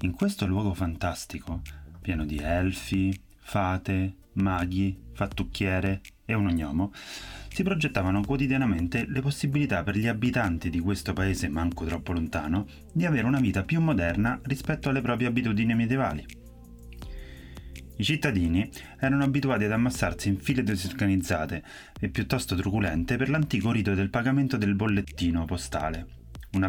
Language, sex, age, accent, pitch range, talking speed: Italian, male, 30-49, native, 85-120 Hz, 135 wpm